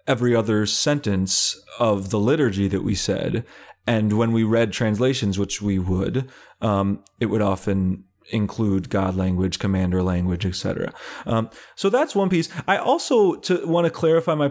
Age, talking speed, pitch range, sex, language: 30-49, 160 wpm, 110-160 Hz, male, English